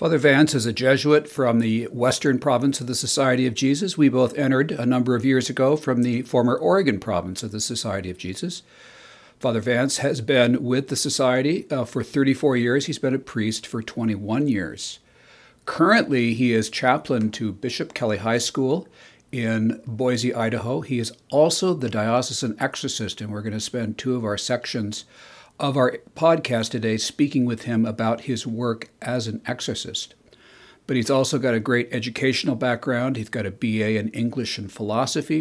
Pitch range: 110-135 Hz